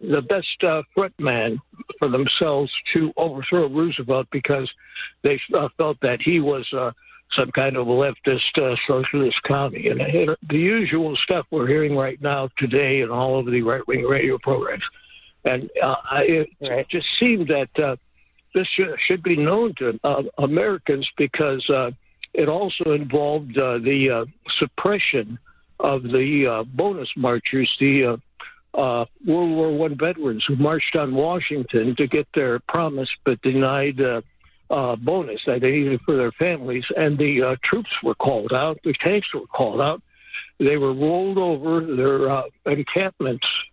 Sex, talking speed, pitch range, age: male, 160 wpm, 130-165 Hz, 60-79